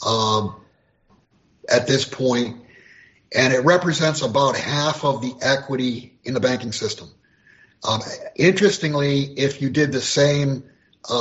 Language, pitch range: English, 130-155 Hz